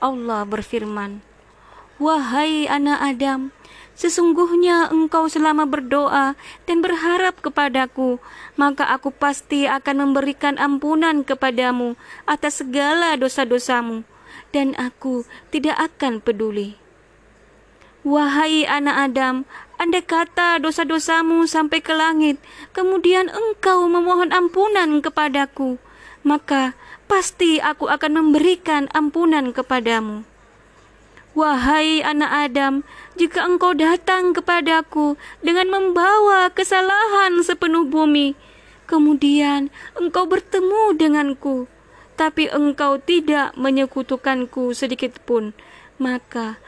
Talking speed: 90 wpm